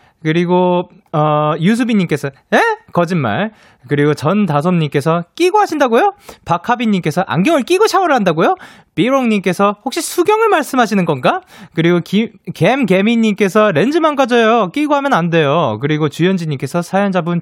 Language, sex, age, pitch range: Korean, male, 20-39, 135-210 Hz